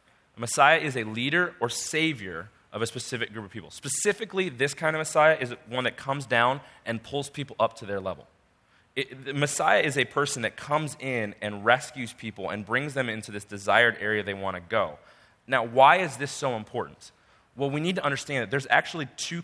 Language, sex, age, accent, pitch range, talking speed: English, male, 30-49, American, 110-145 Hz, 200 wpm